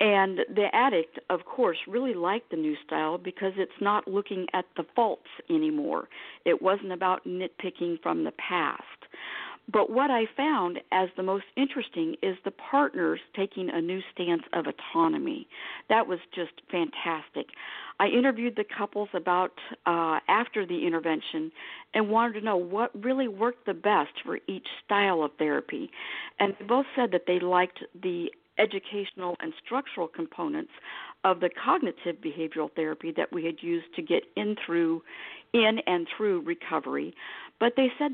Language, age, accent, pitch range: English, 50-69, American, 175-240 Hz